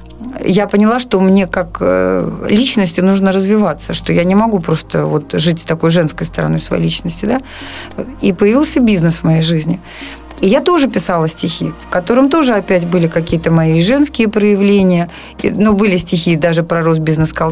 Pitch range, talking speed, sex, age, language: 175-215 Hz, 160 wpm, female, 30-49, Russian